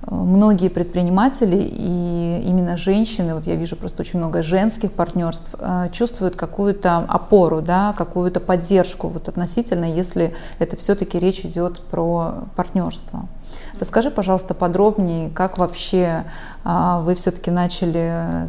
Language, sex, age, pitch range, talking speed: Russian, female, 20-39, 170-200 Hz, 120 wpm